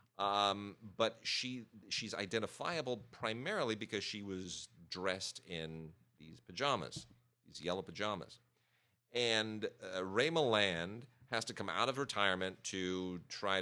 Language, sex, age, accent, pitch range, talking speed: English, male, 40-59, American, 90-120 Hz, 125 wpm